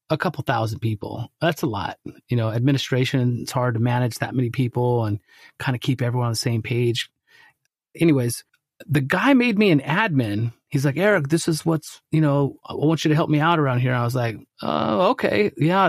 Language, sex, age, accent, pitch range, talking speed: English, male, 30-49, American, 130-155 Hz, 210 wpm